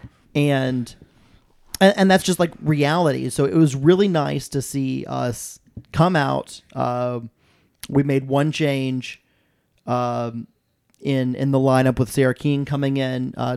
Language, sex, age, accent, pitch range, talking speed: English, male, 30-49, American, 130-155 Hz, 140 wpm